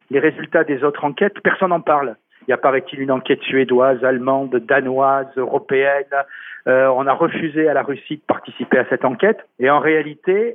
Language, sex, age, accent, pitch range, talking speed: French, male, 50-69, French, 145-175 Hz, 190 wpm